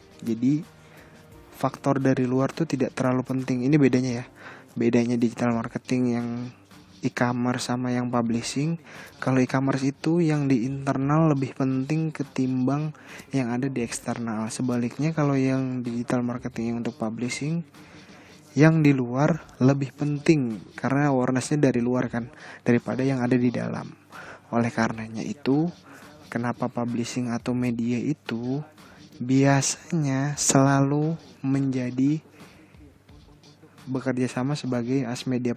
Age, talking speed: 20-39, 120 wpm